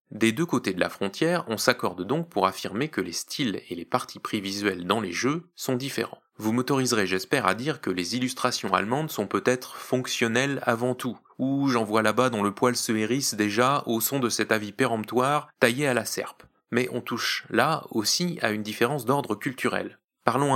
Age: 20-39